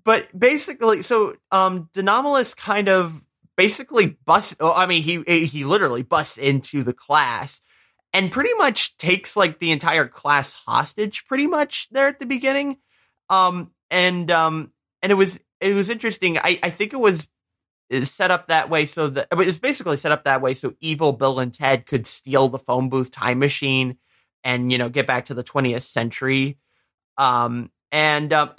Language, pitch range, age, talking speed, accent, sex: English, 130-185 Hz, 20-39, 175 wpm, American, male